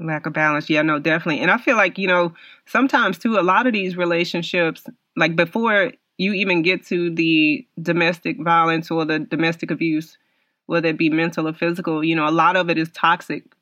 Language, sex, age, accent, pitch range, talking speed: English, female, 30-49, American, 165-195 Hz, 205 wpm